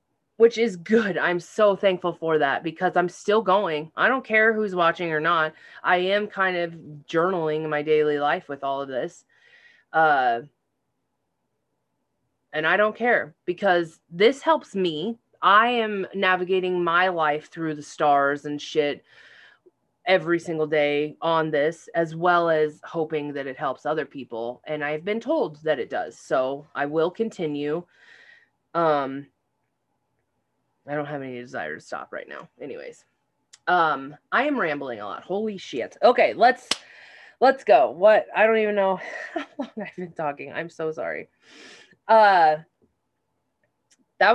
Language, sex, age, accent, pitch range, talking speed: English, female, 20-39, American, 155-230 Hz, 155 wpm